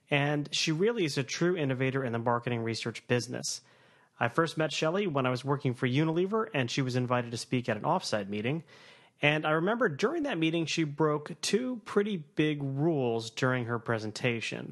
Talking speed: 190 wpm